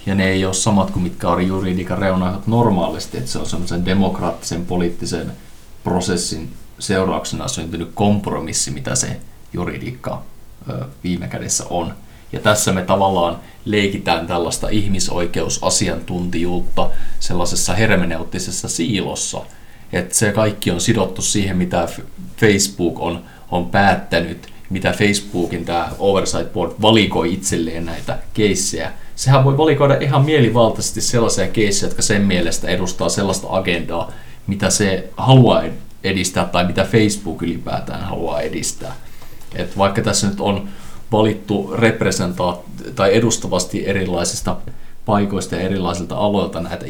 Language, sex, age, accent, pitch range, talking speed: Finnish, male, 30-49, native, 85-105 Hz, 120 wpm